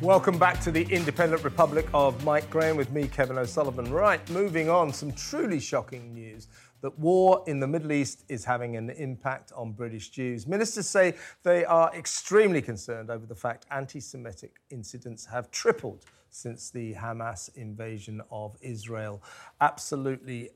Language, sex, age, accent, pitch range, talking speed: English, male, 40-59, British, 120-155 Hz, 155 wpm